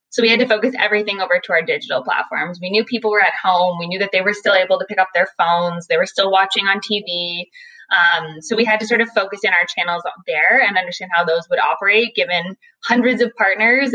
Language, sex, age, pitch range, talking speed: English, female, 20-39, 180-230 Hz, 250 wpm